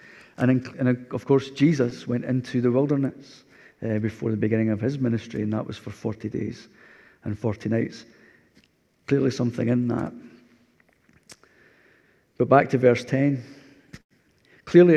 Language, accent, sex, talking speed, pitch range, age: English, British, male, 145 wpm, 120-140 Hz, 40-59